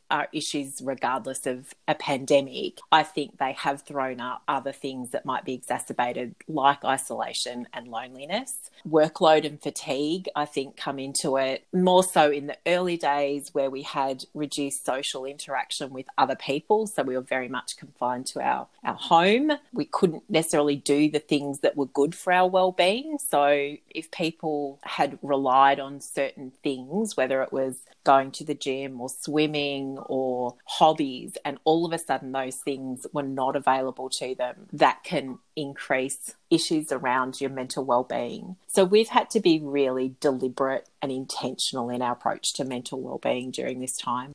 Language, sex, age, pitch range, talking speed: English, female, 30-49, 130-150 Hz, 170 wpm